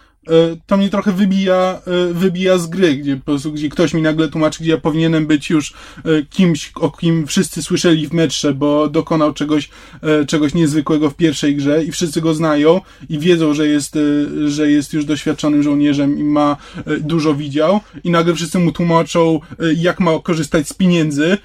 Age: 20-39